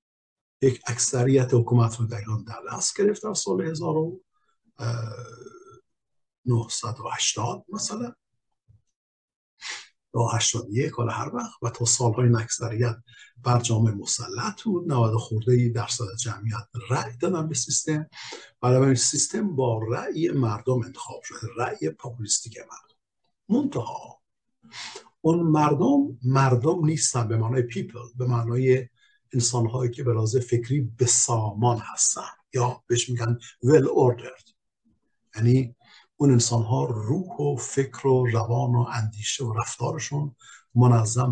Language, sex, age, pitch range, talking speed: Persian, male, 50-69, 115-135 Hz, 115 wpm